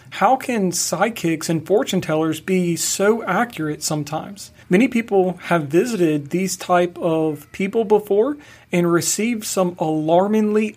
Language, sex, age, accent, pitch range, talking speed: English, male, 40-59, American, 160-190 Hz, 130 wpm